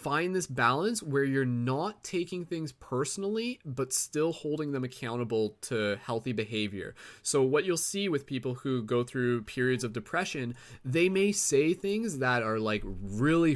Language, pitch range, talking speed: English, 120-160 Hz, 165 wpm